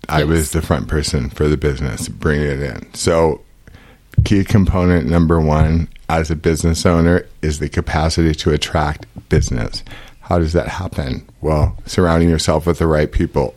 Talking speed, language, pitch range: 165 wpm, English, 80-95 Hz